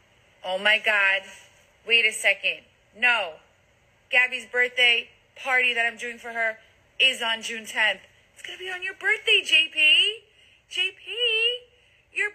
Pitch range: 190-275 Hz